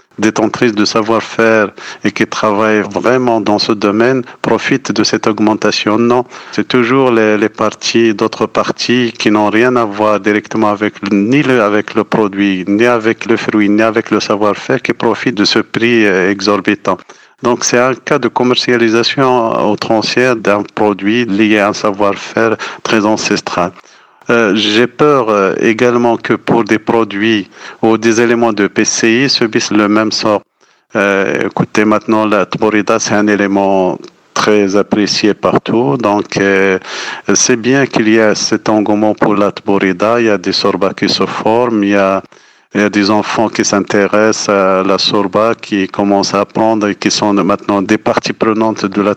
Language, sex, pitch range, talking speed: French, male, 100-115 Hz, 170 wpm